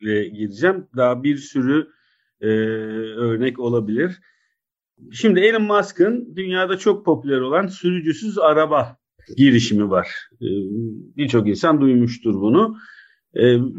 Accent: native